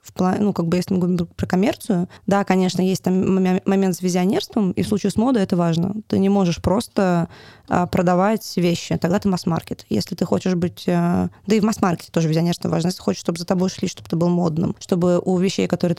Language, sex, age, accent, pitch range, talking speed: Russian, female, 20-39, native, 170-200 Hz, 225 wpm